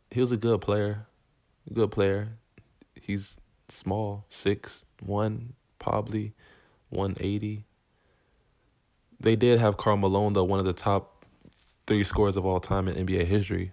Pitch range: 90-105 Hz